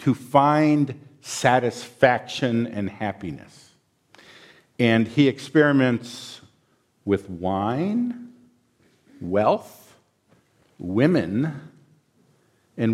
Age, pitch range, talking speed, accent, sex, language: 50-69, 105-130 Hz, 60 wpm, American, male, English